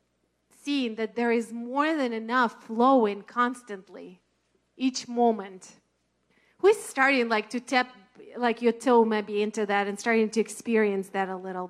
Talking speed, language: 145 wpm, English